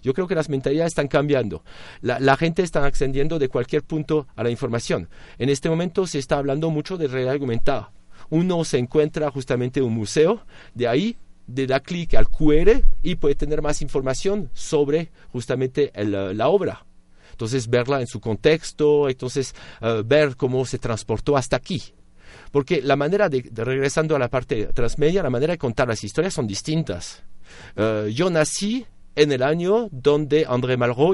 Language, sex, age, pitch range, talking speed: Spanish, male, 40-59, 115-150 Hz, 175 wpm